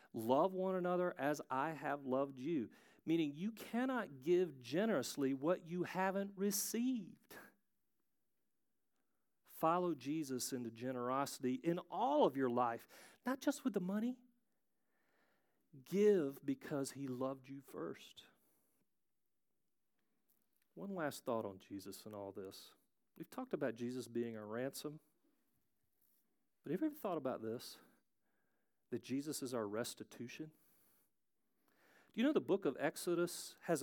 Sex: male